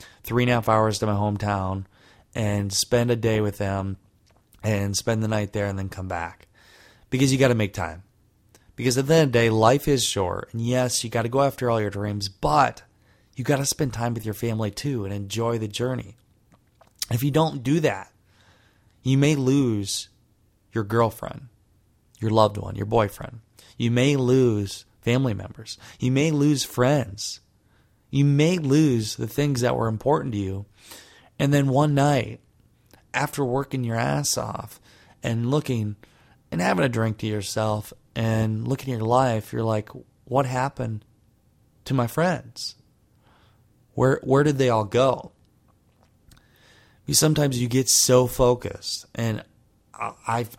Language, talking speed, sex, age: English, 165 wpm, male, 20-39